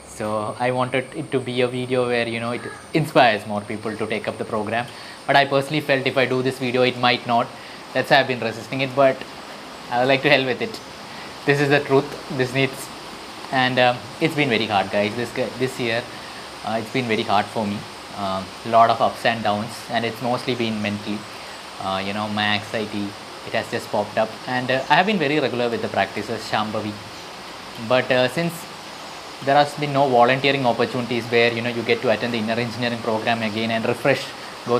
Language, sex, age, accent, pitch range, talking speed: English, male, 20-39, Indian, 115-140 Hz, 215 wpm